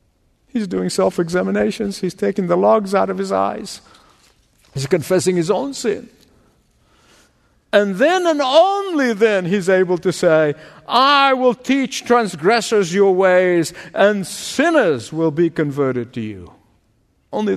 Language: English